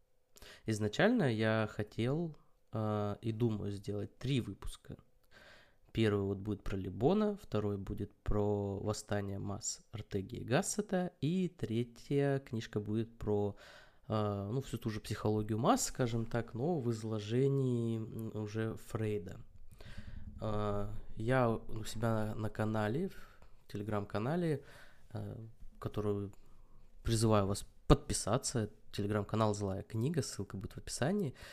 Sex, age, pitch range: male, 20-39, 105-125 Hz